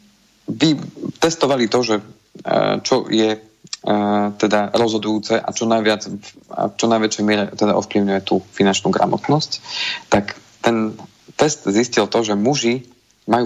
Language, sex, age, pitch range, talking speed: Slovak, male, 40-59, 105-115 Hz, 115 wpm